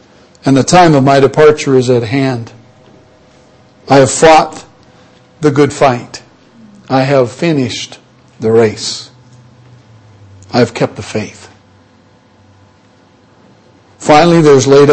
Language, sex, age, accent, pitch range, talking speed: English, male, 60-79, American, 115-140 Hz, 115 wpm